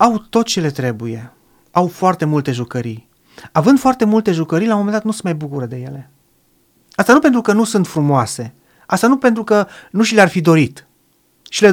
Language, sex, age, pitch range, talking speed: Romanian, male, 30-49, 135-190 Hz, 210 wpm